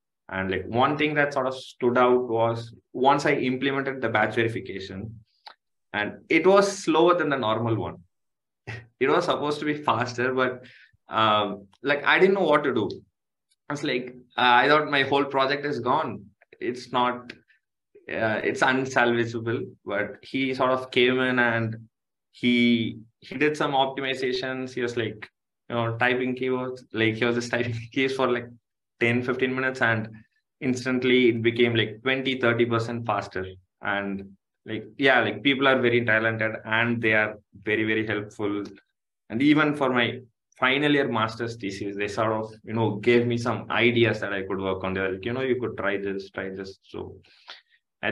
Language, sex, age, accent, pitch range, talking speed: English, male, 20-39, Indian, 110-130 Hz, 180 wpm